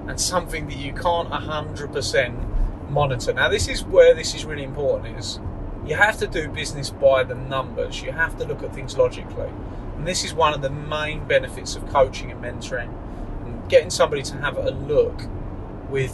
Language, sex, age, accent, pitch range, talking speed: English, male, 30-49, British, 90-150 Hz, 190 wpm